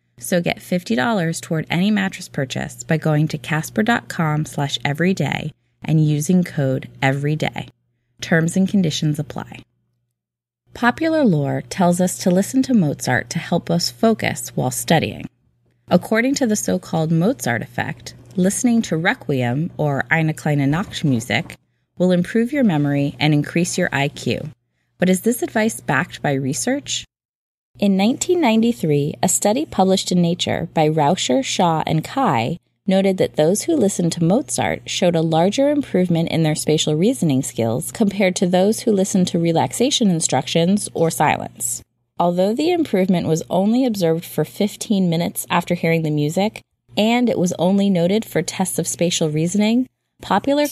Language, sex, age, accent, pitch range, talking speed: English, female, 20-39, American, 150-200 Hz, 150 wpm